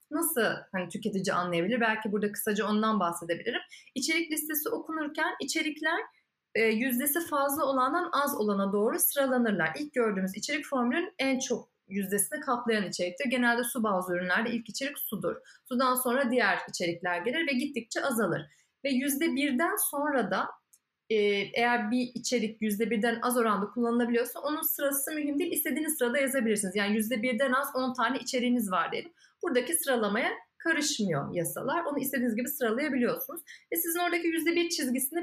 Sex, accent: female, native